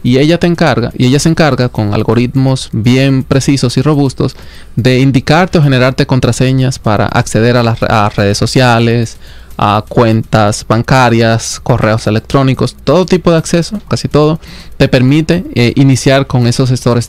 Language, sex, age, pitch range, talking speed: Spanish, male, 20-39, 115-140 Hz, 150 wpm